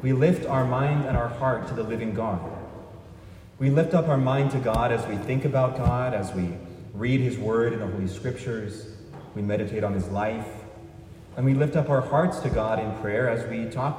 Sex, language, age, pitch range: male, English, 30-49, 105-135 Hz